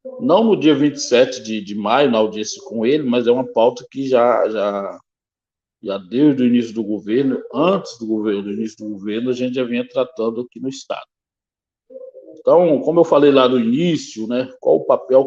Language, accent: Portuguese, Brazilian